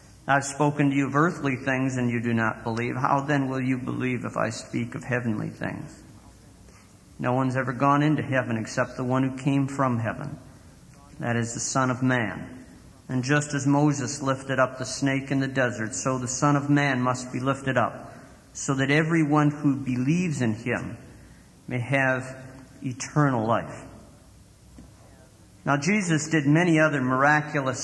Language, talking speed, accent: English, 170 wpm, American